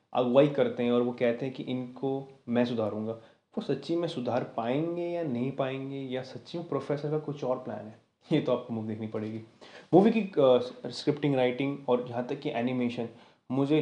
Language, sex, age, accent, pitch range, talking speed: Hindi, male, 20-39, native, 120-145 Hz, 200 wpm